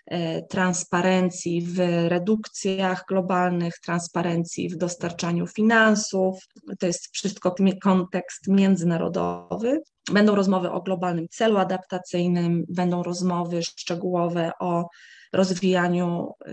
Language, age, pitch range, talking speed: Polish, 20-39, 175-215 Hz, 85 wpm